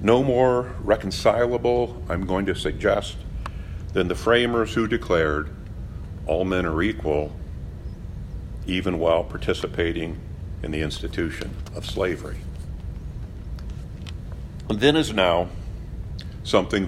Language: English